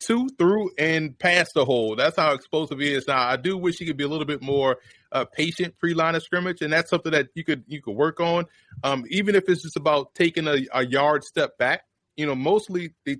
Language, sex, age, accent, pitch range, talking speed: English, male, 30-49, American, 130-165 Hz, 240 wpm